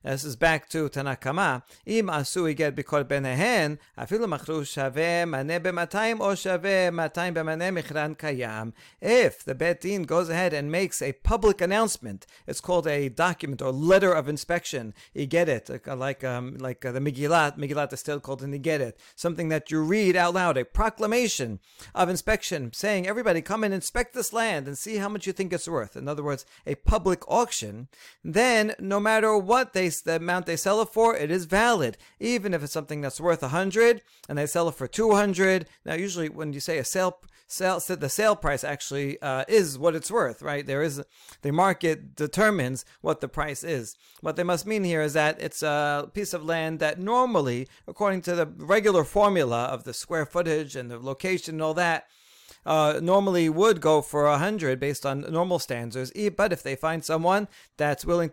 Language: English